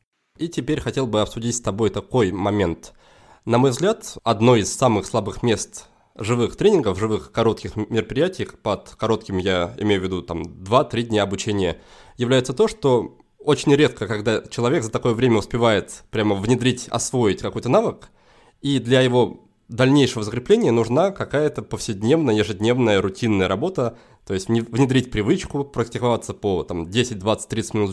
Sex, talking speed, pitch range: male, 140 wpm, 105-130 Hz